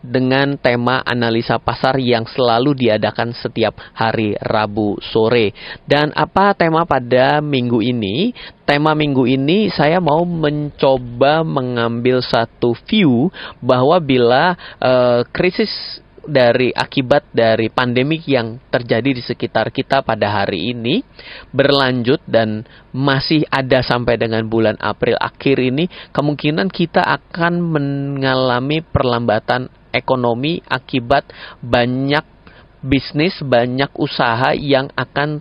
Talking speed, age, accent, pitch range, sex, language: 110 wpm, 30-49, native, 120-145 Hz, male, Indonesian